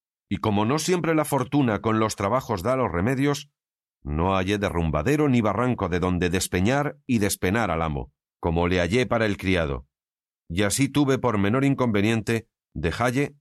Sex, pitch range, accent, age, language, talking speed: male, 85-125 Hz, Spanish, 40-59, Spanish, 165 wpm